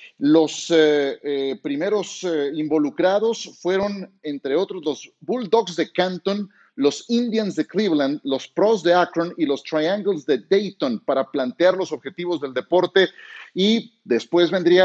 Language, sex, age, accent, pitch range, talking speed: Spanish, male, 40-59, Mexican, 150-195 Hz, 140 wpm